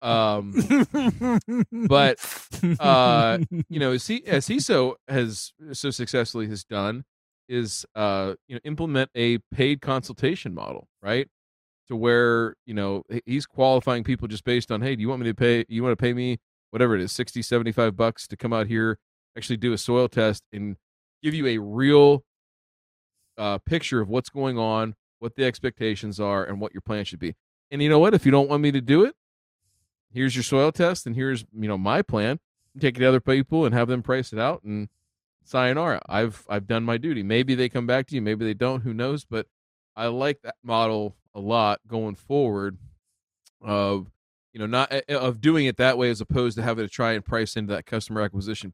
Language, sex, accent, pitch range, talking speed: English, male, American, 105-130 Hz, 200 wpm